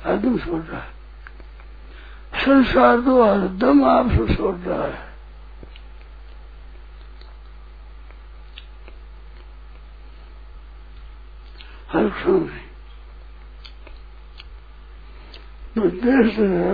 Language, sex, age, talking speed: Hindi, male, 60-79, 45 wpm